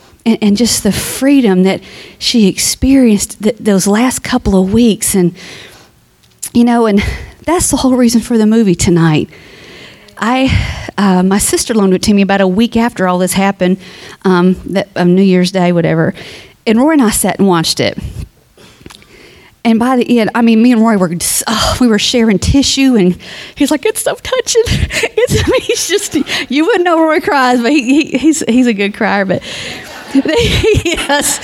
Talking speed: 185 wpm